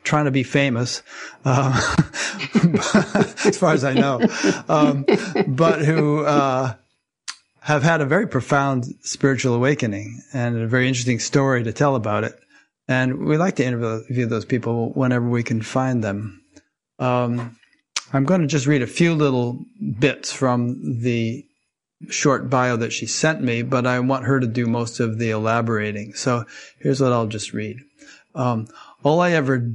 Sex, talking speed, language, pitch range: male, 160 wpm, English, 115-135 Hz